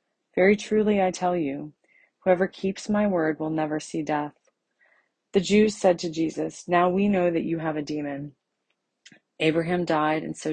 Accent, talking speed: American, 170 wpm